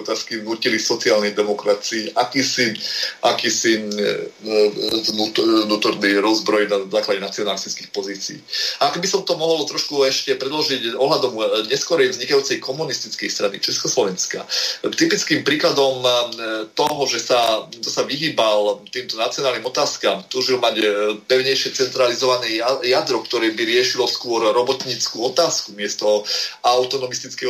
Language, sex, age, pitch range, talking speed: Slovak, male, 30-49, 110-155 Hz, 110 wpm